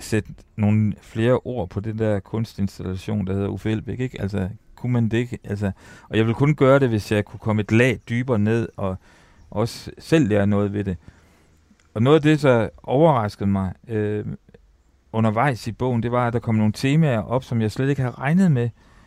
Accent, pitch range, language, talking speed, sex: native, 100-125 Hz, Danish, 205 wpm, male